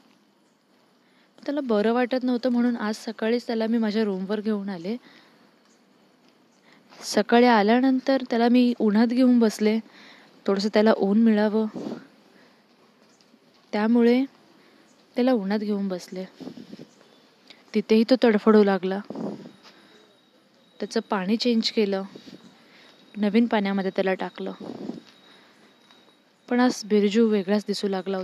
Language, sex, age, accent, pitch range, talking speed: Marathi, female, 20-39, native, 210-245 Hz, 100 wpm